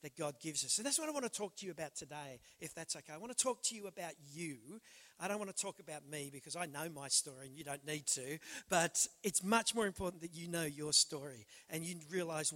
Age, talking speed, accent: 50-69, 270 wpm, Australian